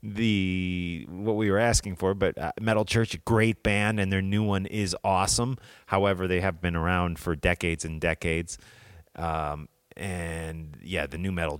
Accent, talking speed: American, 175 wpm